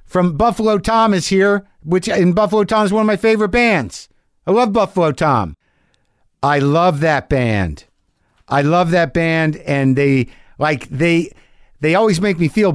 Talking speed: 170 wpm